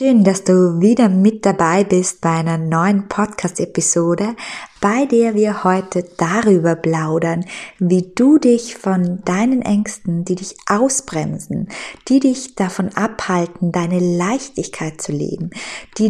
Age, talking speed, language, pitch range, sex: 20-39, 130 wpm, German, 165-220 Hz, female